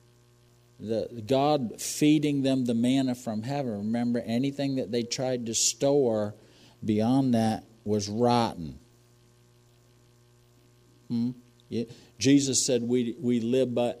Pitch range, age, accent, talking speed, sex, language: 110-130 Hz, 50-69, American, 115 wpm, male, English